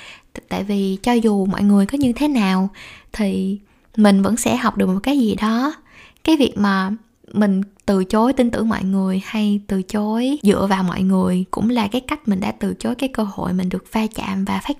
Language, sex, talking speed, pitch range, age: Vietnamese, female, 220 wpm, 200-245 Hz, 20-39